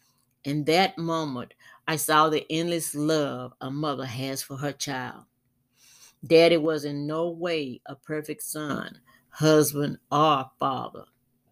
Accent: American